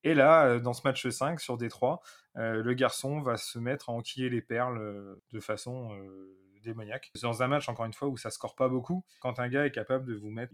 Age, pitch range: 20-39, 115-135 Hz